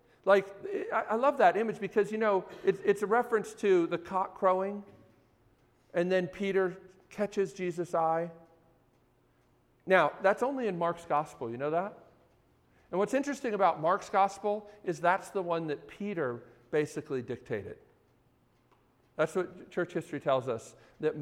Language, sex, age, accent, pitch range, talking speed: English, male, 50-69, American, 145-200 Hz, 145 wpm